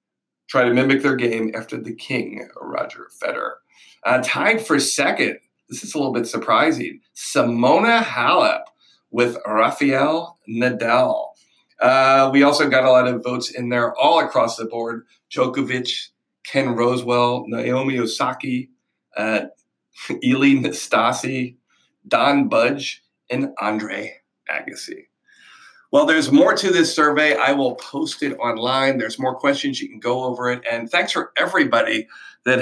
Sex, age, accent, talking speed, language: male, 40-59, American, 135 wpm, English